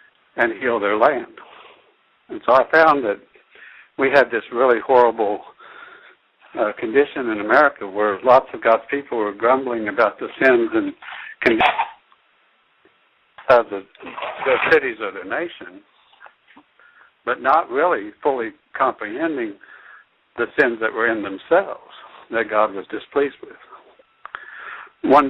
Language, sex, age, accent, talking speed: English, male, 60-79, American, 130 wpm